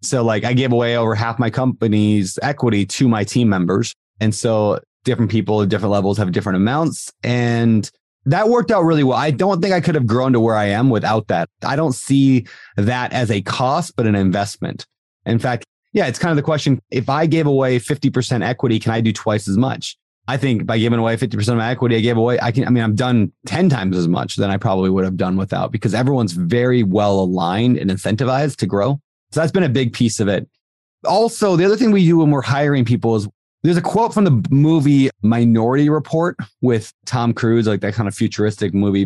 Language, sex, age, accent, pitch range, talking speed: English, male, 30-49, American, 110-145 Hz, 225 wpm